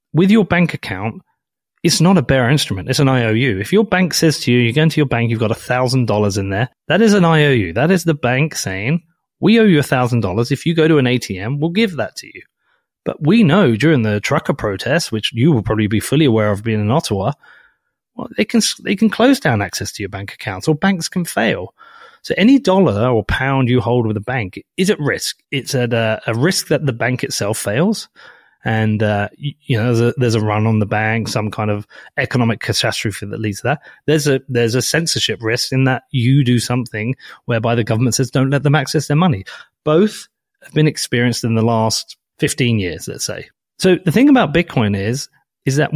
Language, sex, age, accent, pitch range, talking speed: English, male, 30-49, British, 115-165 Hz, 220 wpm